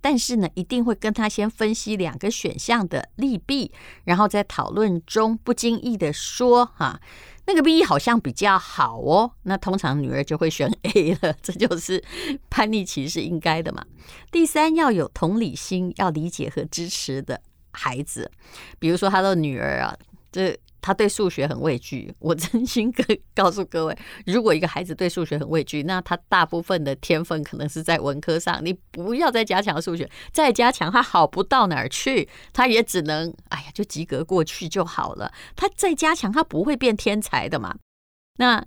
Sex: female